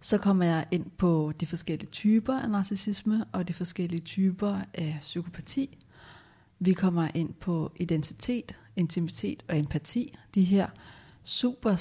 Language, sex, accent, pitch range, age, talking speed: Danish, female, native, 160-200 Hz, 40-59, 135 wpm